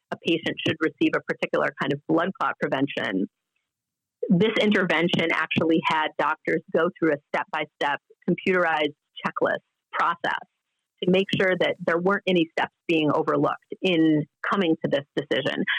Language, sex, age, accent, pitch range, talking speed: English, female, 30-49, American, 155-205 Hz, 145 wpm